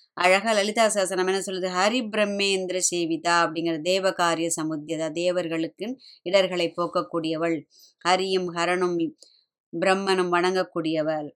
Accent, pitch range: native, 175-215 Hz